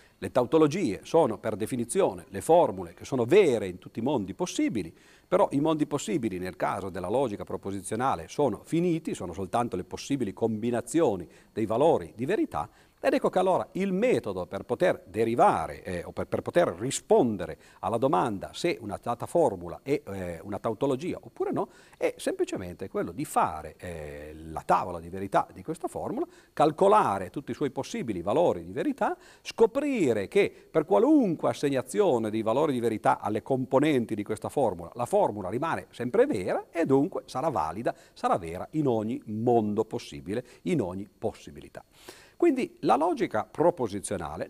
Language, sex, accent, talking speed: Italian, male, native, 160 wpm